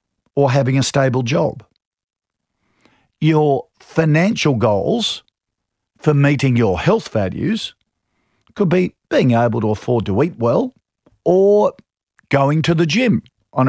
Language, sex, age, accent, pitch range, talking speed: English, male, 50-69, Australian, 115-150 Hz, 125 wpm